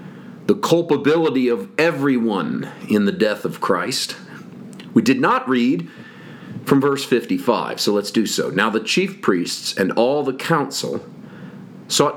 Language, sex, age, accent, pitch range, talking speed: English, male, 40-59, American, 110-150 Hz, 145 wpm